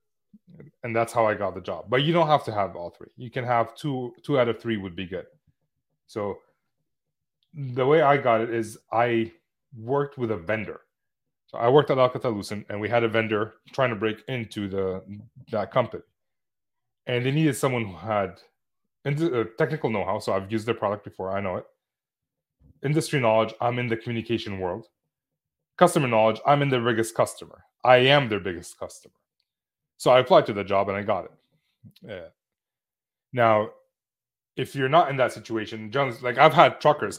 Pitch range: 110-140 Hz